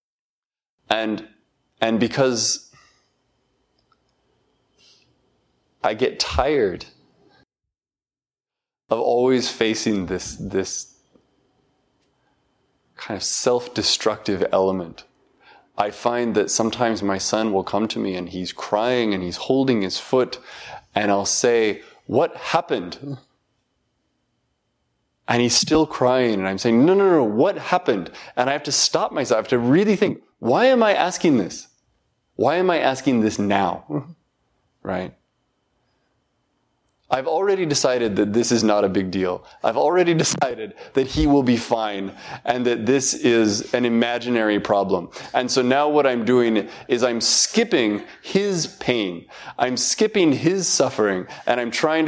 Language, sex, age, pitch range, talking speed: English, male, 20-39, 105-140 Hz, 135 wpm